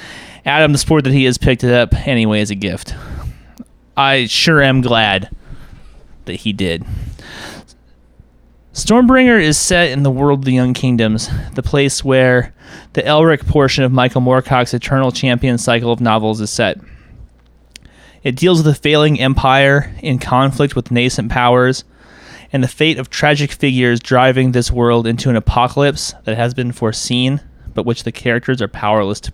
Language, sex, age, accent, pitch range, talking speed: English, male, 30-49, American, 115-140 Hz, 165 wpm